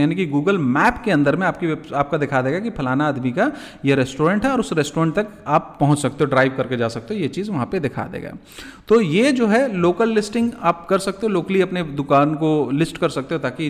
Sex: male